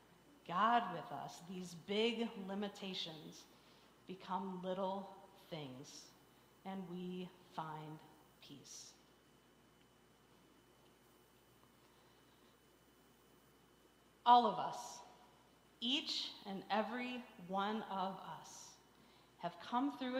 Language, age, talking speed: English, 40-59, 75 wpm